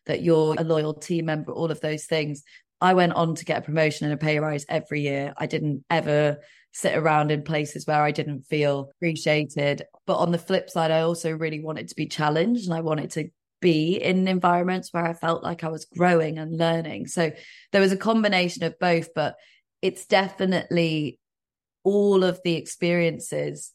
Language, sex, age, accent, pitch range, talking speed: English, female, 20-39, British, 150-175 Hz, 195 wpm